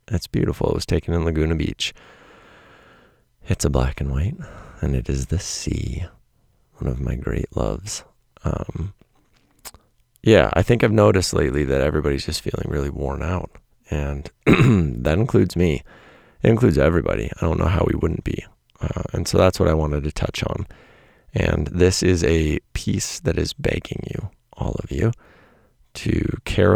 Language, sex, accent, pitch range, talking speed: English, male, American, 75-105 Hz, 170 wpm